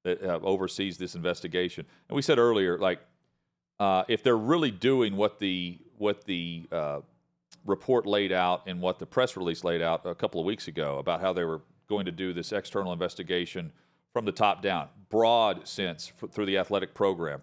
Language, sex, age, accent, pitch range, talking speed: English, male, 40-59, American, 90-115 Hz, 185 wpm